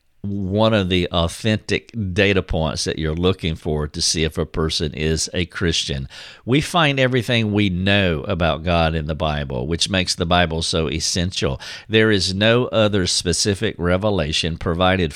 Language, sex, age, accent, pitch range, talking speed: English, male, 50-69, American, 85-105 Hz, 160 wpm